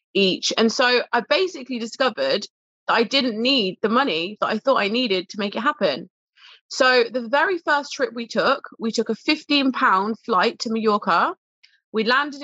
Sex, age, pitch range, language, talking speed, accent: female, 20-39, 210-255 Hz, English, 185 wpm, British